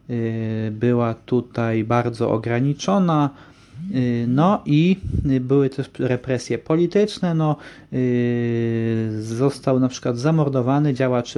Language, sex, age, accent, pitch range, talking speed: Polish, male, 30-49, native, 120-140 Hz, 80 wpm